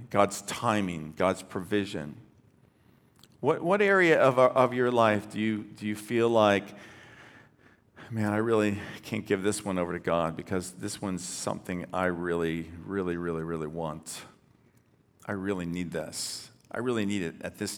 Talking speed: 160 wpm